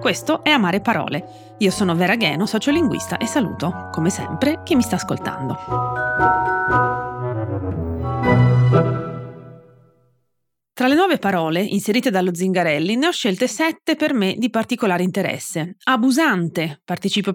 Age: 30-49